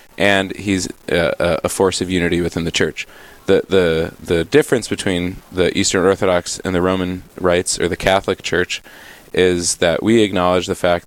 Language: English